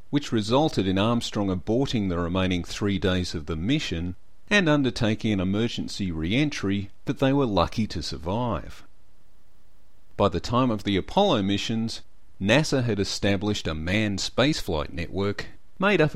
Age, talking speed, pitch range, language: 40-59, 145 wpm, 90-115 Hz, English